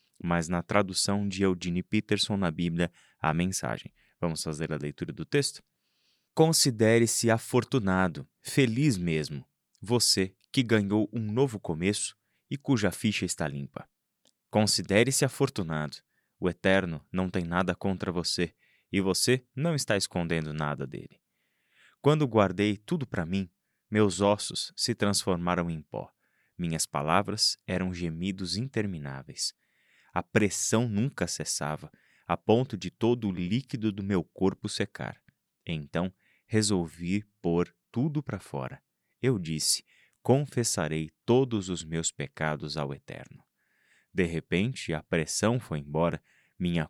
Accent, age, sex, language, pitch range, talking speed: Brazilian, 20-39, male, Portuguese, 85-110 Hz, 125 wpm